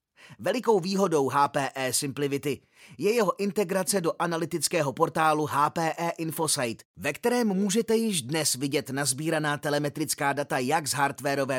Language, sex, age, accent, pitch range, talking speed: Czech, male, 30-49, native, 145-190 Hz, 125 wpm